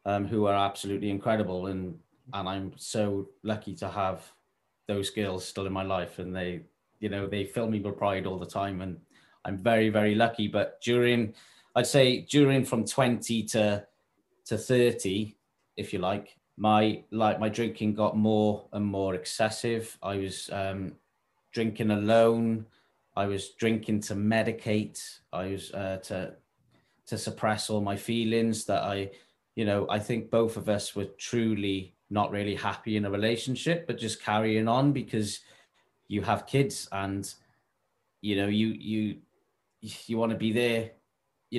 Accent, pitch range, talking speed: British, 100-115 Hz, 160 wpm